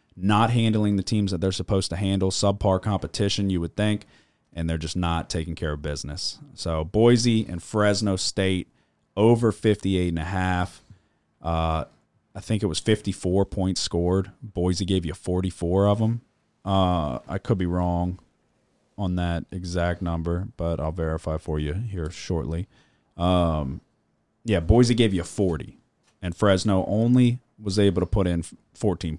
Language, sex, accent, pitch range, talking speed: English, male, American, 80-100 Hz, 160 wpm